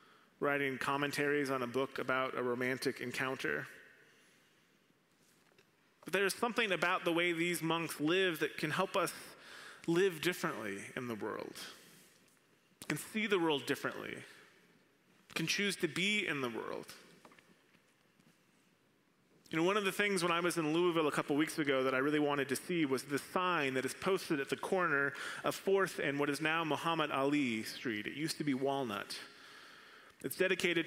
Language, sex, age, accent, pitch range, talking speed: English, male, 30-49, American, 140-180 Hz, 165 wpm